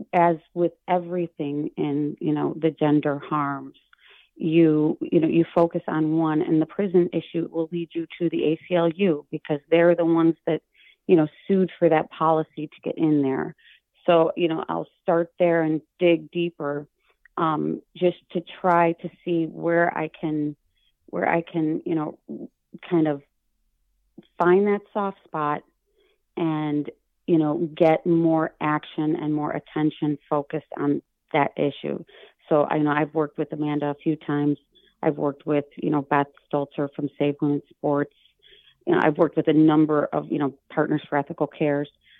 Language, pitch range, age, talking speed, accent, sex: English, 150-170 Hz, 30-49, 170 wpm, American, female